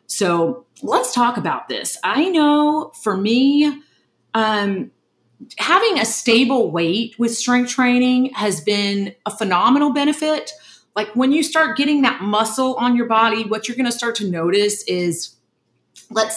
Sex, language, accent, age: female, English, American, 40-59